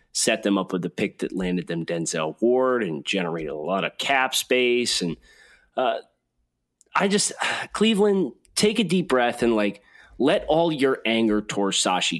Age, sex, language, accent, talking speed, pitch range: 30-49, male, English, American, 170 wpm, 105-145 Hz